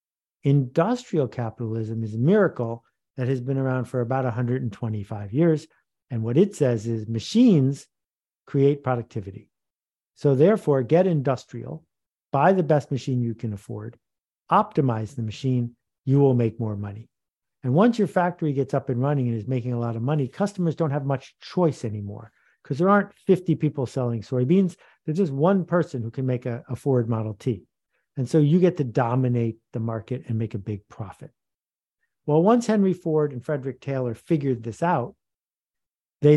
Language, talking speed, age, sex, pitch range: English, 170 wpm, 50-69, male, 115-155 Hz